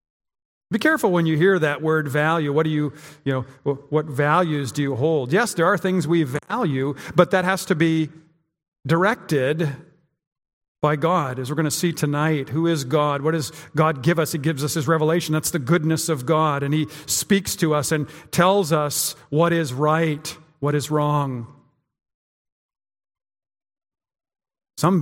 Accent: American